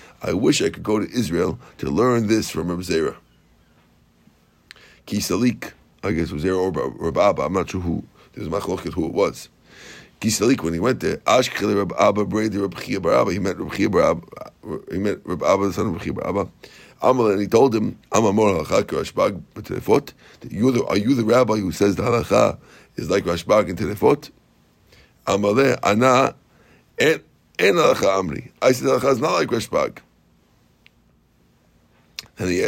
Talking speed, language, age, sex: 175 wpm, English, 50-69, male